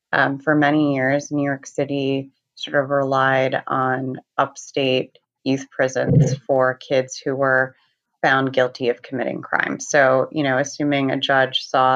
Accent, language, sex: American, English, female